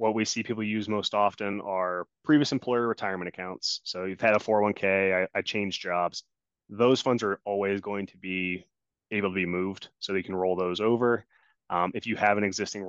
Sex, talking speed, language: male, 205 wpm, English